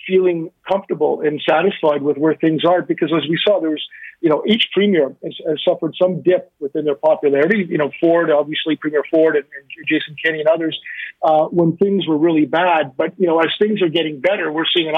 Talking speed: 220 wpm